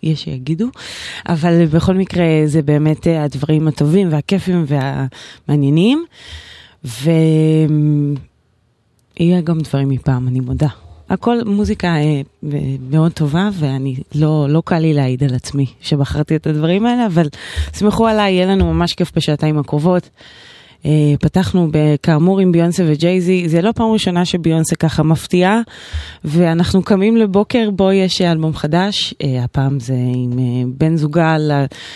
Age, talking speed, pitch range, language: 20-39, 125 wpm, 145-190 Hz, Hebrew